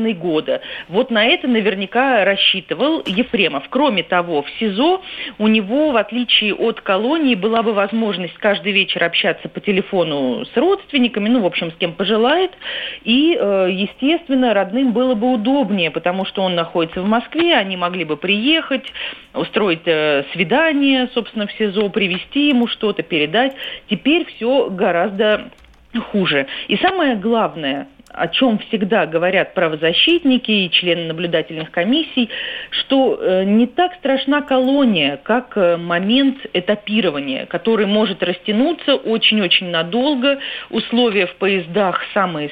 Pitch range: 185-255 Hz